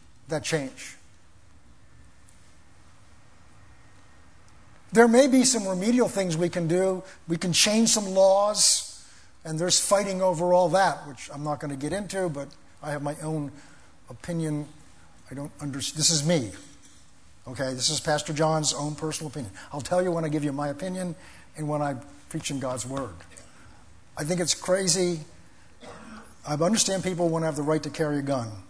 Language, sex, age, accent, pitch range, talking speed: English, male, 50-69, American, 125-185 Hz, 165 wpm